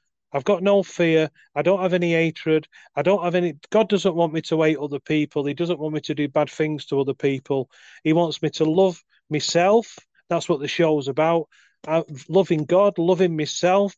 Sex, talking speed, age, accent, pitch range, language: male, 200 wpm, 30-49, British, 150-185 Hz, English